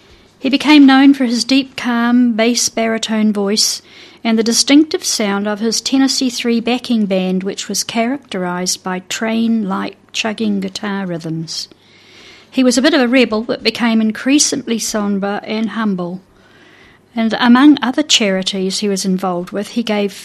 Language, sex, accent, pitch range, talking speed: English, female, British, 205-250 Hz, 150 wpm